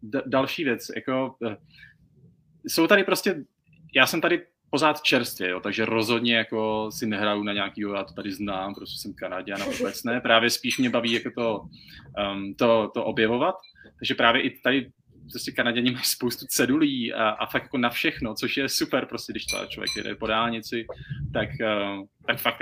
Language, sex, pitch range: Czech, male, 110-135 Hz